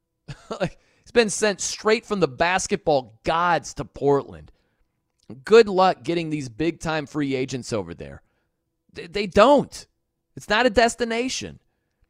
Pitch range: 150-220 Hz